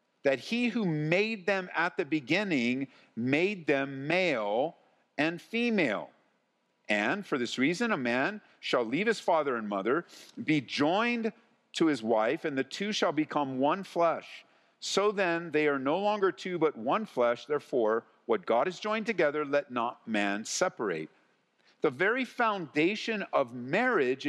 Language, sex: English, male